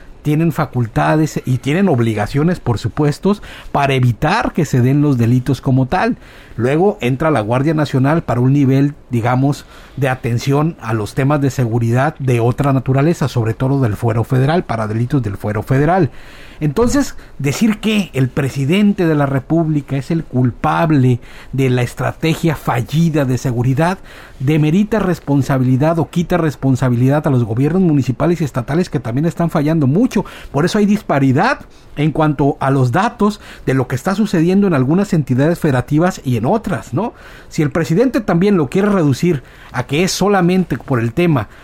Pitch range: 125-170 Hz